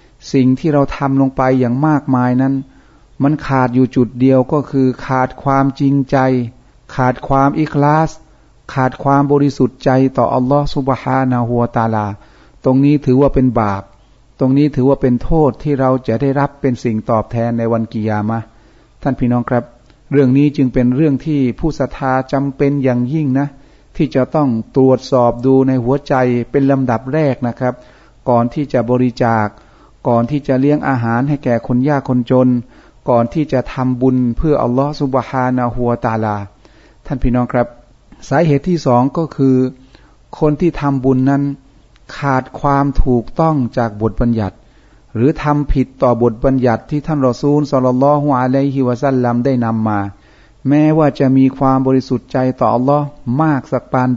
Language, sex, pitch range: Thai, male, 120-140 Hz